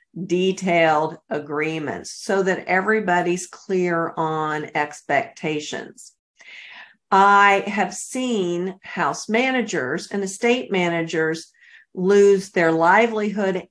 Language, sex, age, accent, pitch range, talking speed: English, female, 50-69, American, 165-205 Hz, 85 wpm